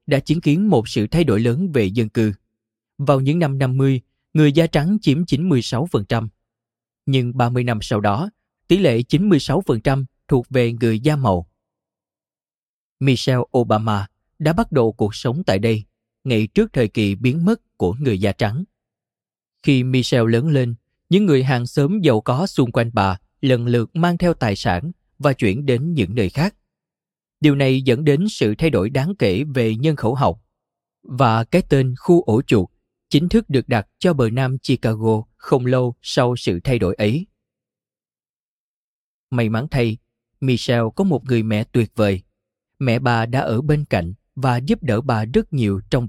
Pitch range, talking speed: 110-140 Hz, 175 wpm